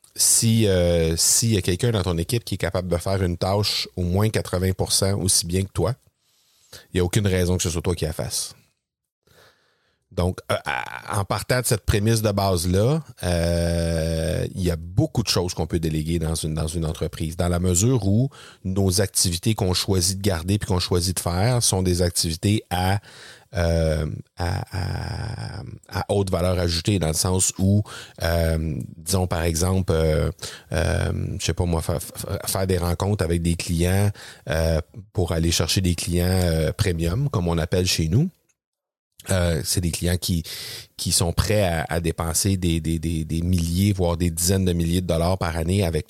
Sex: male